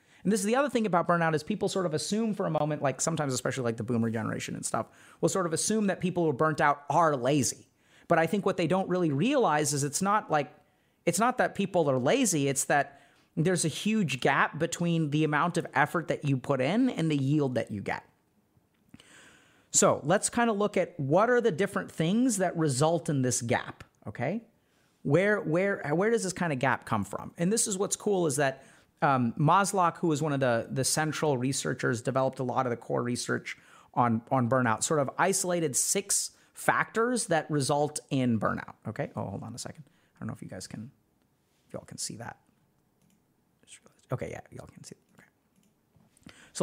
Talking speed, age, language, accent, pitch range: 210 wpm, 30-49, English, American, 140-200 Hz